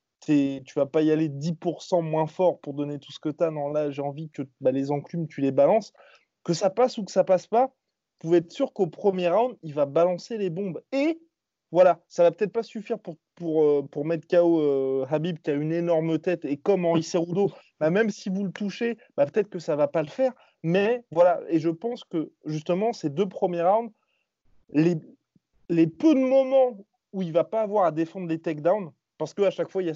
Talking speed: 230 wpm